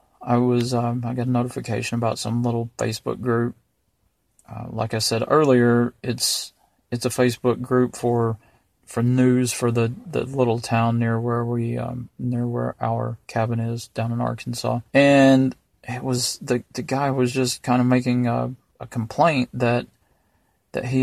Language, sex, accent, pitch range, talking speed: English, male, American, 115-130 Hz, 170 wpm